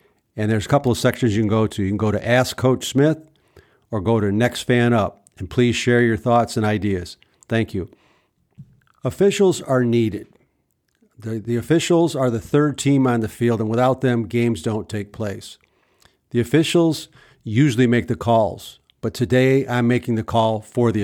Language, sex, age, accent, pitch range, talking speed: English, male, 50-69, American, 105-130 Hz, 190 wpm